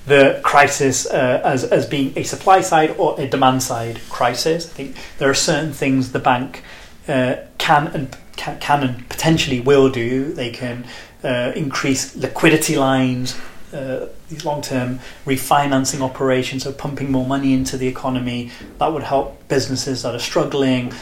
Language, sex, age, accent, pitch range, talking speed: English, male, 30-49, British, 130-145 Hz, 155 wpm